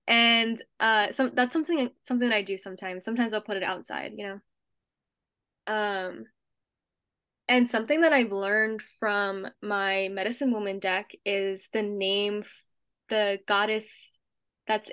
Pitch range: 195-240 Hz